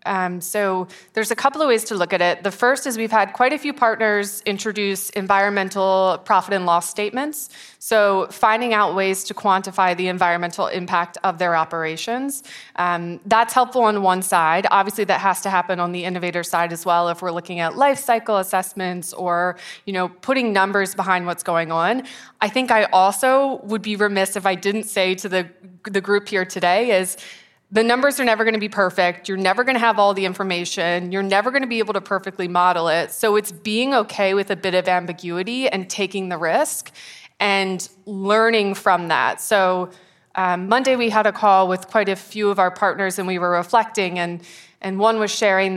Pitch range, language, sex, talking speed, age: 180-210 Hz, English, female, 205 wpm, 20-39